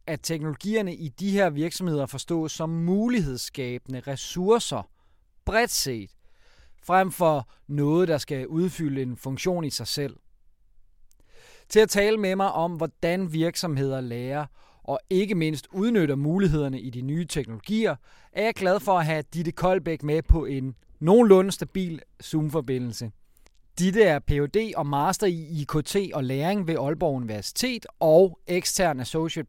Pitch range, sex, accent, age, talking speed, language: 135-185 Hz, male, native, 30-49, 140 wpm, Danish